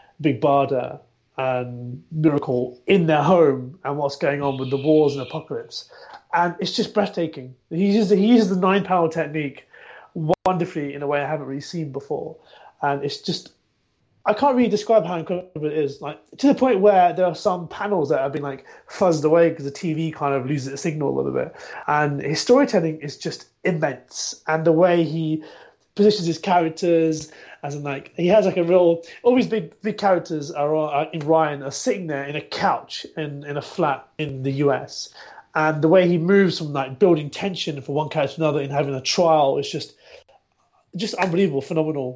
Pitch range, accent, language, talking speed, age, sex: 140-180 Hz, British, English, 200 wpm, 30-49, male